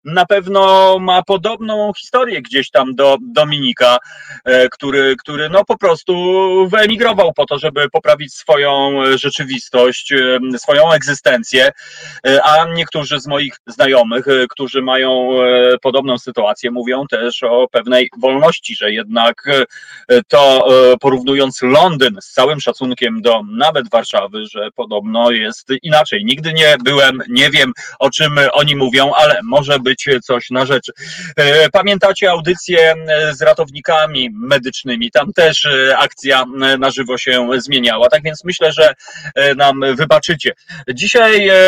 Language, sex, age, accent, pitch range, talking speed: Polish, male, 30-49, native, 130-180 Hz, 125 wpm